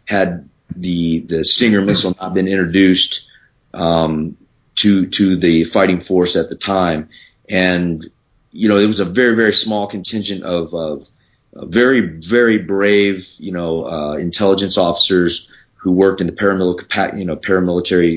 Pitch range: 85-100 Hz